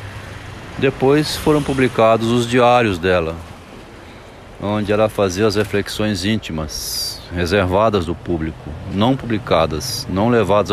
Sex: male